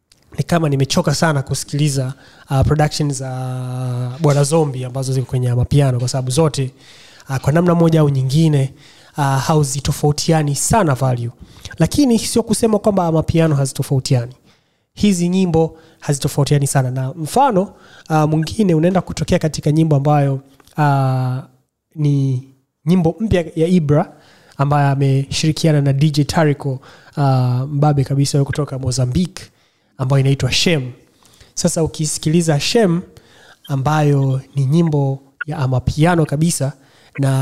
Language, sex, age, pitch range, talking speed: Swahili, male, 30-49, 135-165 Hz, 120 wpm